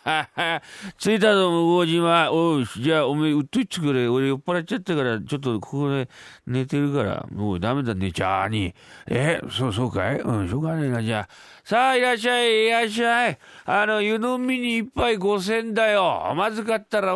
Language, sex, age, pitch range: Japanese, male, 40-59, 115-175 Hz